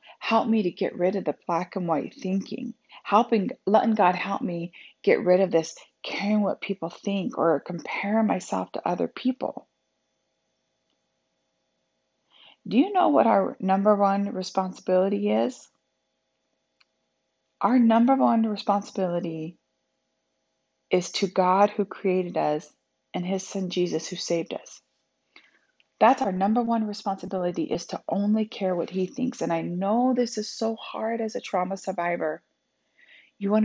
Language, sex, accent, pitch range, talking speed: English, female, American, 170-205 Hz, 145 wpm